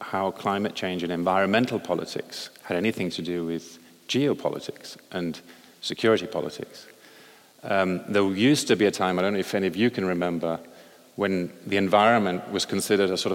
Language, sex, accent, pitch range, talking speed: English, male, British, 85-105 Hz, 170 wpm